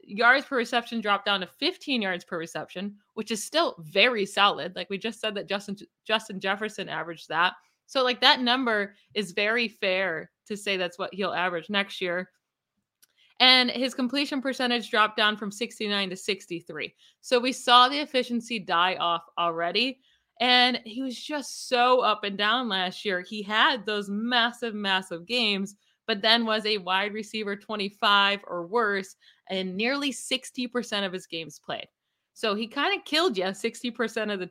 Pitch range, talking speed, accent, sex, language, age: 195-240 Hz, 170 wpm, American, female, English, 20-39